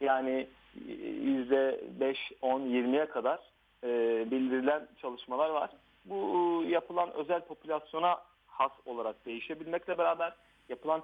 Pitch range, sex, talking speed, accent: 130-175 Hz, male, 80 wpm, native